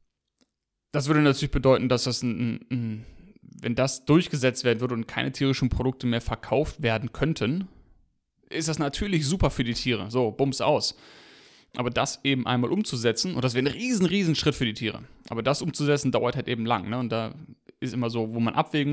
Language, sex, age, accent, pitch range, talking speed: German, male, 30-49, German, 115-135 Hz, 185 wpm